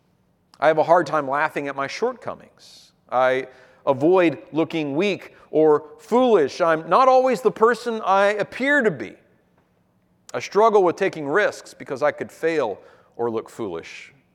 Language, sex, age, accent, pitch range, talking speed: English, male, 40-59, American, 140-220 Hz, 150 wpm